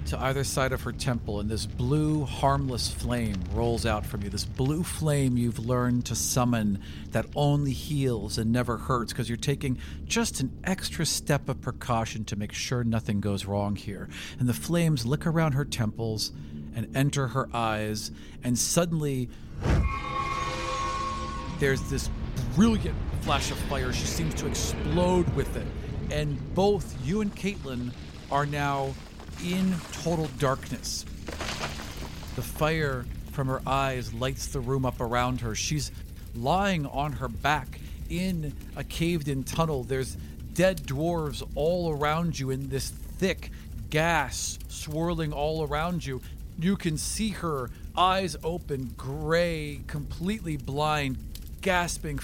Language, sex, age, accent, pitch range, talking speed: English, male, 50-69, American, 110-150 Hz, 140 wpm